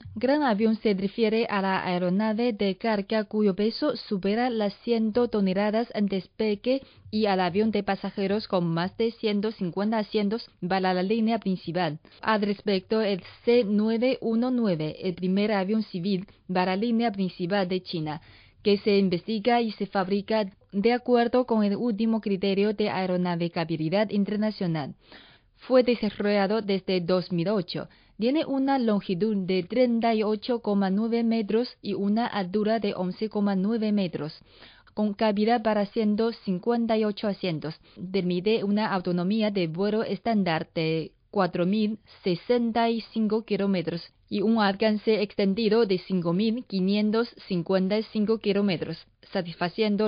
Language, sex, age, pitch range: Chinese, female, 20-39, 190-225 Hz